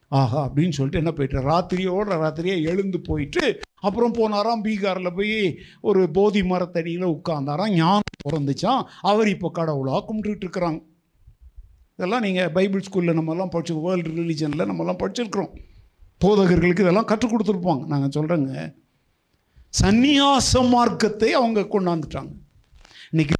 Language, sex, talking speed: Tamil, male, 115 wpm